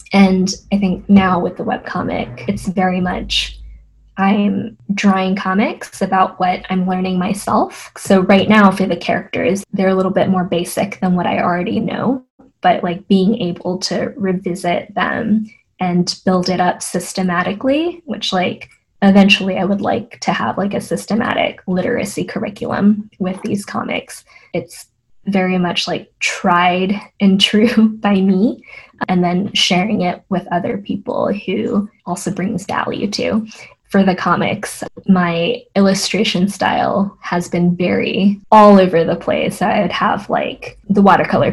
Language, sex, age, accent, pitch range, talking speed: English, female, 10-29, American, 180-210 Hz, 145 wpm